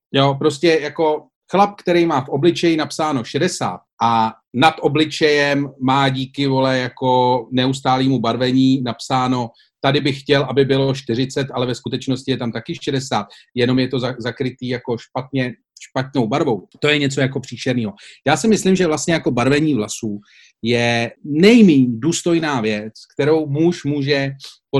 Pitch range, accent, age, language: 130-155 Hz, native, 40-59, Czech